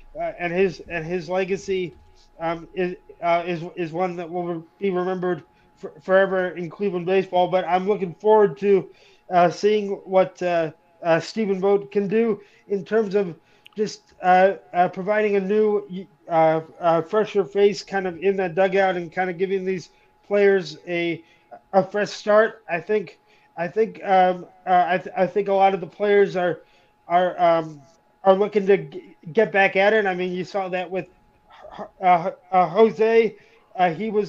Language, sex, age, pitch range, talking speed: English, male, 20-39, 180-205 Hz, 175 wpm